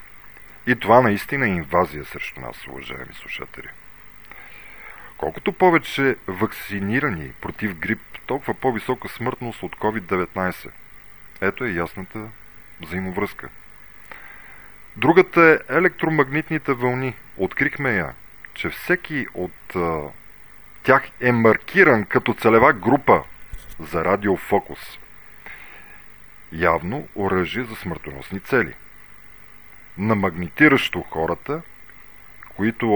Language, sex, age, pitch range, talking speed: Bulgarian, male, 40-59, 90-120 Hz, 90 wpm